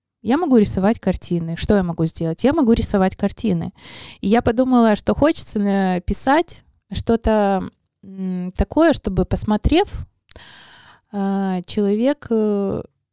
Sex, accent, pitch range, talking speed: female, native, 185-235 Hz, 105 wpm